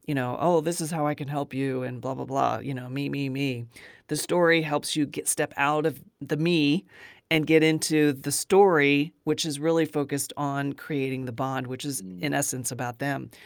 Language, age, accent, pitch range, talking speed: English, 40-59, American, 140-160 Hz, 215 wpm